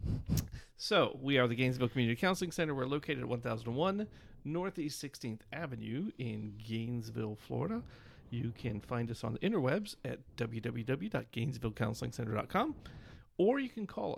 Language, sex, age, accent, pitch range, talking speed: English, male, 40-59, American, 110-140 Hz, 130 wpm